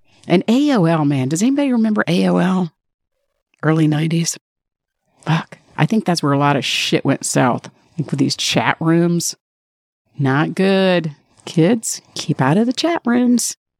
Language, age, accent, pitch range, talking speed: English, 50-69, American, 150-195 Hz, 150 wpm